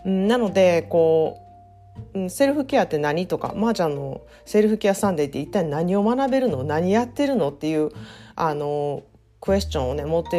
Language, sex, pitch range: Japanese, female, 150-205 Hz